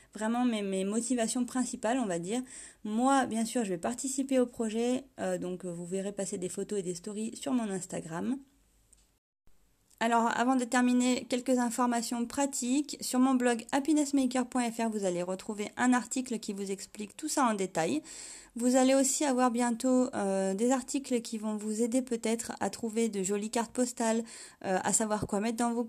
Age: 30-49